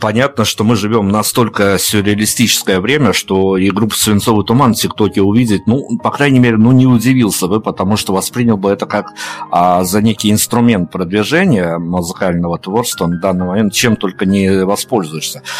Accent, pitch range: native, 95-110 Hz